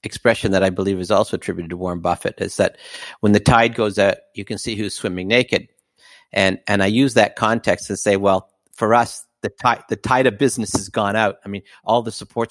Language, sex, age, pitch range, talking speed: English, male, 50-69, 95-115 Hz, 230 wpm